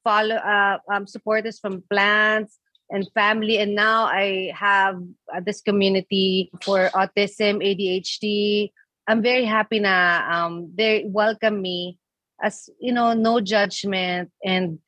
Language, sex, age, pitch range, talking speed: English, female, 30-49, 180-220 Hz, 130 wpm